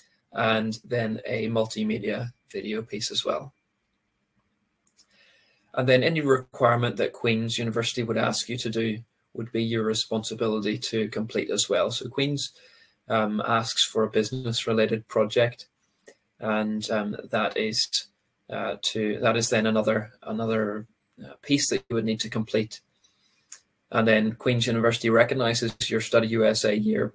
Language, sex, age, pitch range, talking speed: English, male, 20-39, 110-125 Hz, 140 wpm